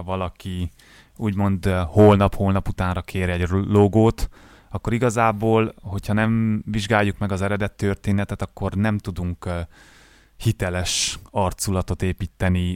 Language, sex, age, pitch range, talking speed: Hungarian, male, 30-49, 90-105 Hz, 110 wpm